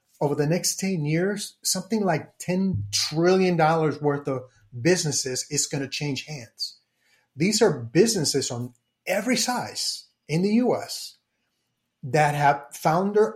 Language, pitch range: English, 135-180 Hz